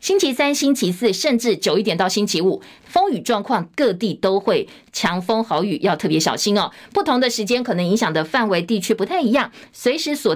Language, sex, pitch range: Chinese, female, 195-270 Hz